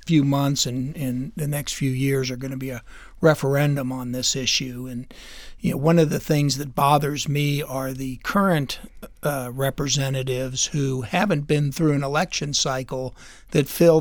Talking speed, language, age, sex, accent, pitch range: 175 wpm, English, 60-79, male, American, 130-160 Hz